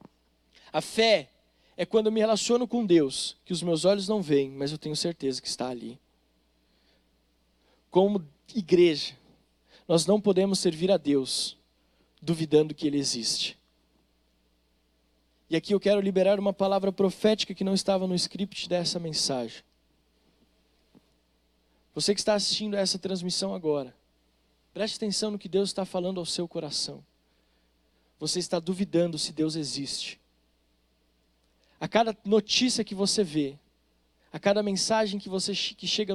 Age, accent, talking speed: 20-39, Brazilian, 140 wpm